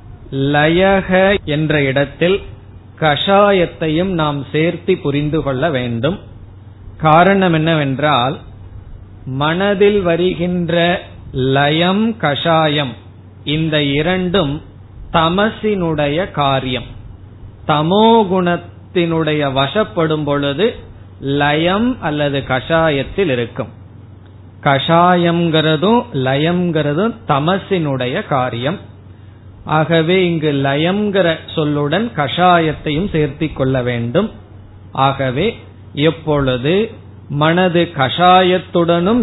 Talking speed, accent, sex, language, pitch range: 65 wpm, native, male, Tamil, 120-175 Hz